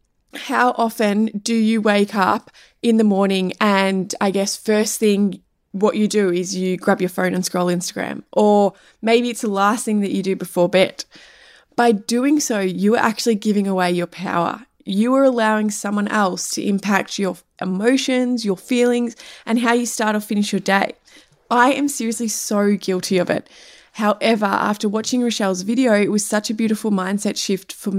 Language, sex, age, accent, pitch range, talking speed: English, female, 20-39, Australian, 195-240 Hz, 180 wpm